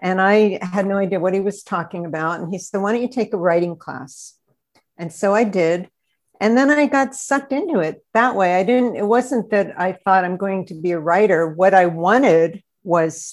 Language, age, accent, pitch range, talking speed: English, 50-69, American, 175-210 Hz, 225 wpm